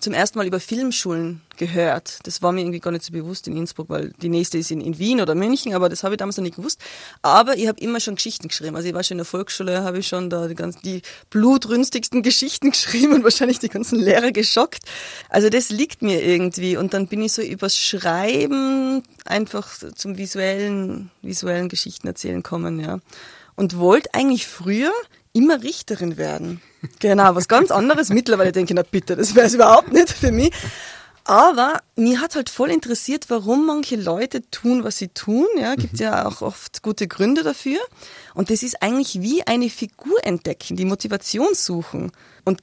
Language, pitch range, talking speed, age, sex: German, 185-245 Hz, 195 wpm, 20-39, female